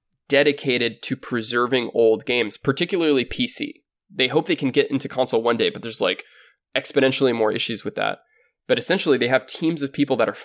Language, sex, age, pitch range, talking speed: English, male, 20-39, 120-145 Hz, 190 wpm